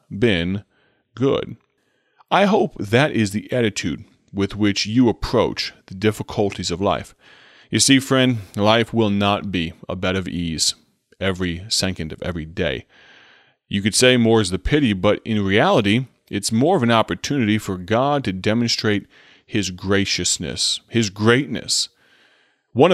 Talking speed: 145 wpm